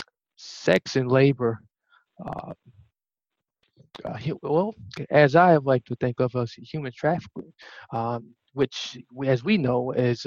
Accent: American